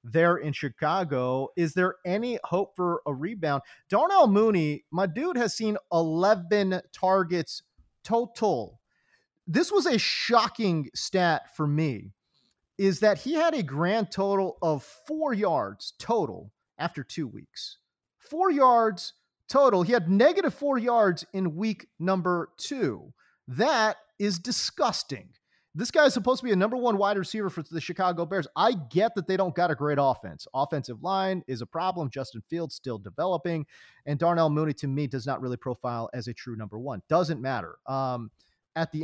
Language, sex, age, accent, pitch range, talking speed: English, male, 30-49, American, 145-205 Hz, 165 wpm